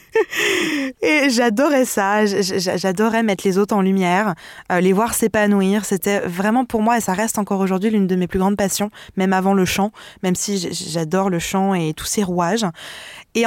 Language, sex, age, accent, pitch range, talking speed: French, female, 20-39, French, 185-230 Hz, 185 wpm